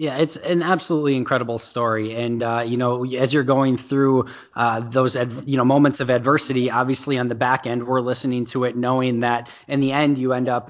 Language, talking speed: English, 200 wpm